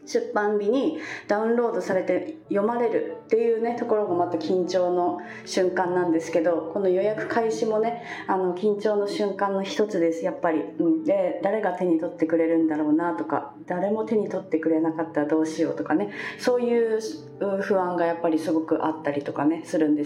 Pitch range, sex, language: 165-235 Hz, female, Japanese